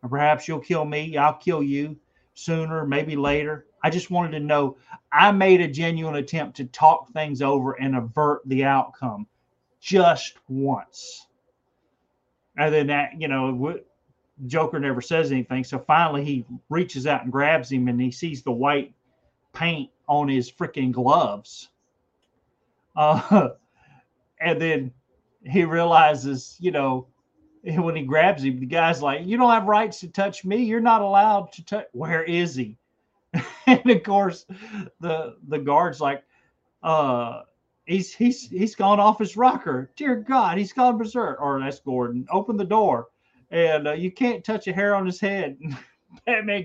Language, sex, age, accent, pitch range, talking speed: English, male, 40-59, American, 140-185 Hz, 160 wpm